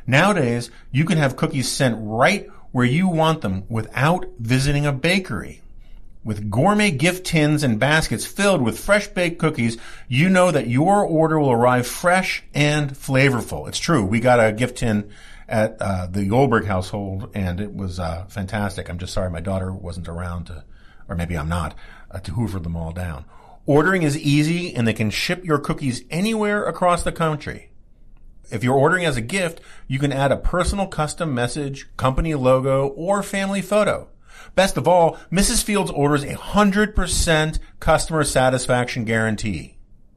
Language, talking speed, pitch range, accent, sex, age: English, 165 wpm, 110-170 Hz, American, male, 50-69